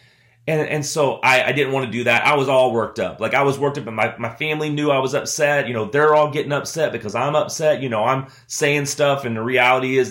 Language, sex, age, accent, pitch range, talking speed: English, male, 30-49, American, 120-155 Hz, 275 wpm